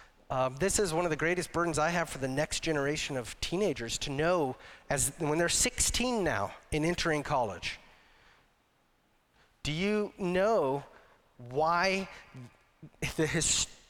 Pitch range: 145-190 Hz